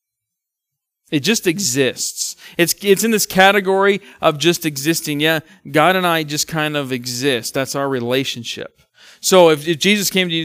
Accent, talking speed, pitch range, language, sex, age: American, 165 wpm, 125-155 Hz, English, male, 40-59